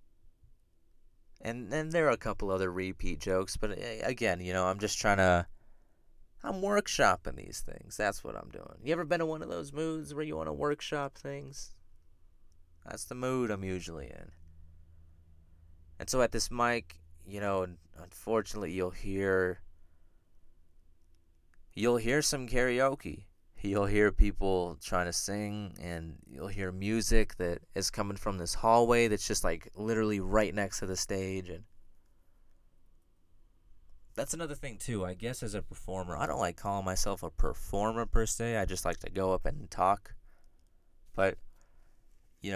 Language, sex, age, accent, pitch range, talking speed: English, male, 20-39, American, 85-110 Hz, 160 wpm